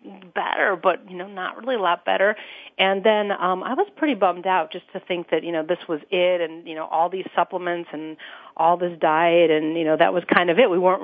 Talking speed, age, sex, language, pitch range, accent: 250 wpm, 40-59, female, English, 165-205 Hz, American